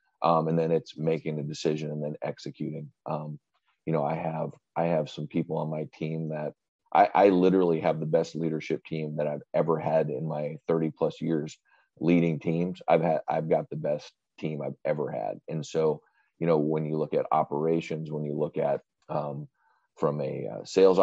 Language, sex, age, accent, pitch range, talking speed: English, male, 30-49, American, 75-85 Hz, 200 wpm